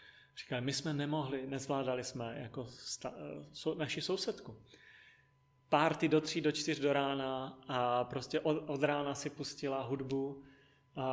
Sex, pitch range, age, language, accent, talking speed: male, 125-150 Hz, 30-49, Czech, native, 125 wpm